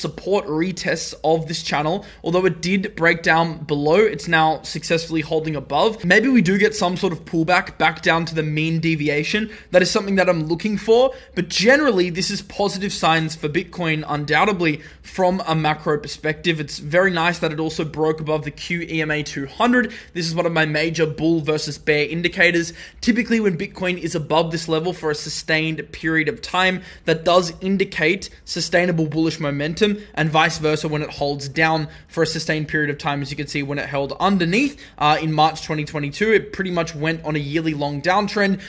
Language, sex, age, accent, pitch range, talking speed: English, male, 20-39, Australian, 150-185 Hz, 190 wpm